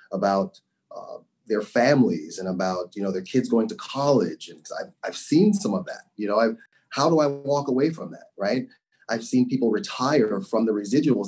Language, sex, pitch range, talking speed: English, male, 115-145 Hz, 200 wpm